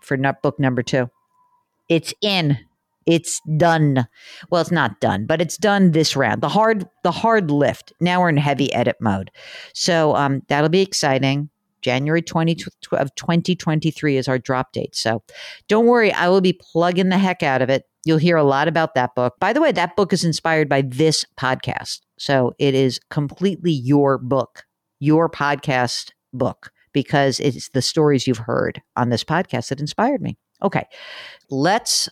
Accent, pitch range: American, 135-190 Hz